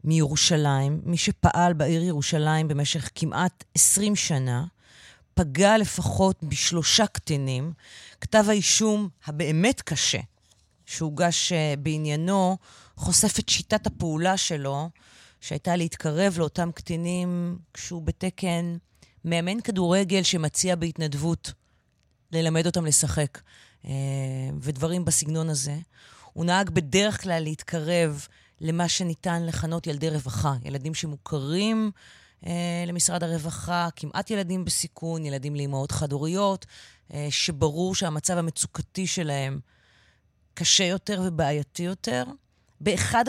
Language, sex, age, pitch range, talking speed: Hebrew, female, 30-49, 150-180 Hz, 100 wpm